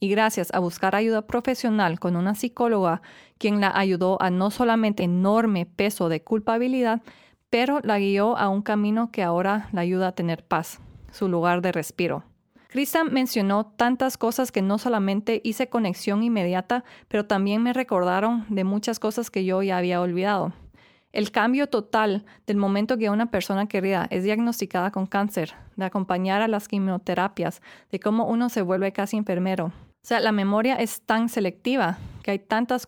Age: 30-49